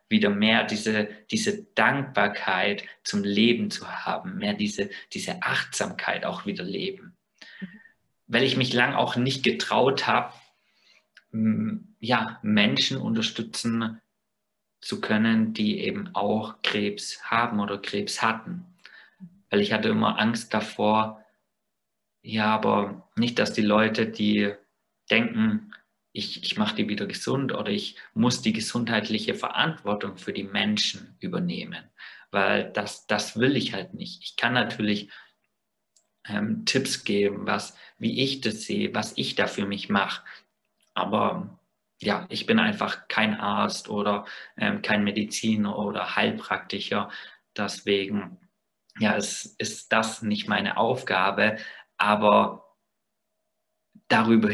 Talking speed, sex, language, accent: 120 wpm, male, German, German